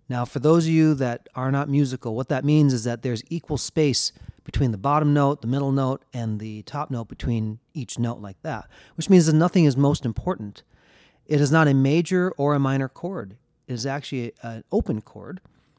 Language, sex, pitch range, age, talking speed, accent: English, male, 115-150 Hz, 30-49, 210 wpm, American